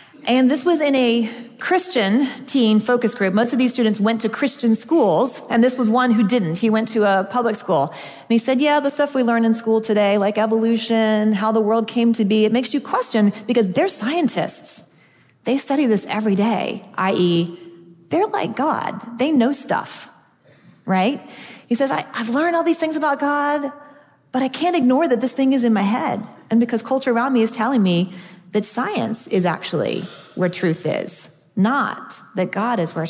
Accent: American